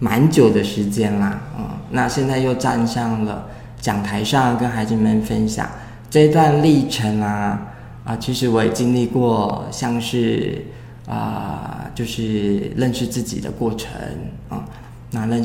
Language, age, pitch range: Chinese, 20-39, 110-125 Hz